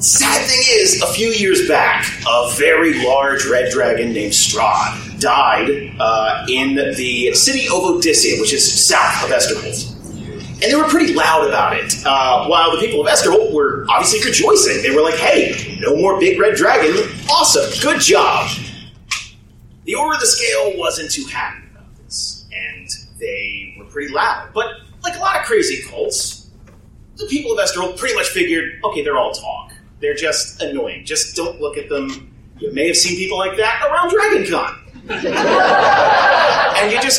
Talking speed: 175 wpm